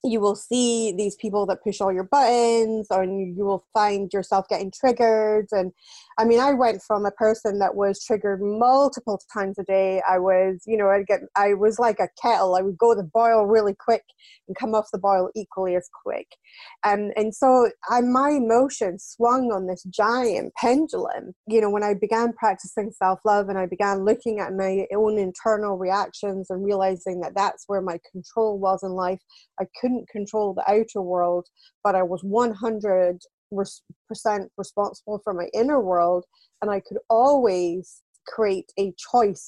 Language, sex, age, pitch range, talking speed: English, female, 30-49, 190-220 Hz, 185 wpm